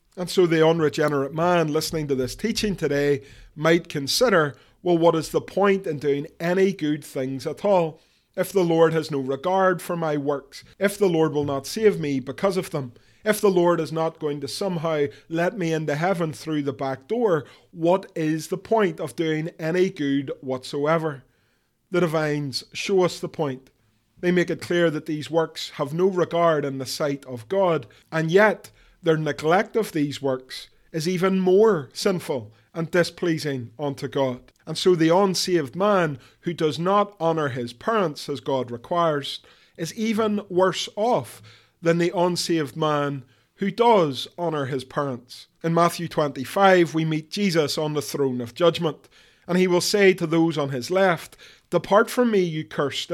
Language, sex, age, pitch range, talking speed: English, male, 30-49, 145-180 Hz, 175 wpm